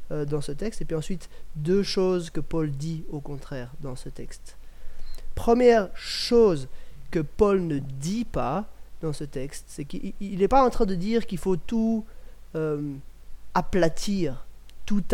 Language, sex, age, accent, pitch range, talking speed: French, male, 30-49, French, 160-205 Hz, 160 wpm